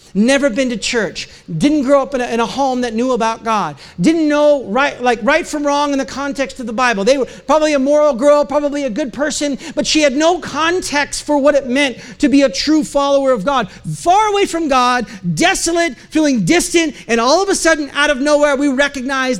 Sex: male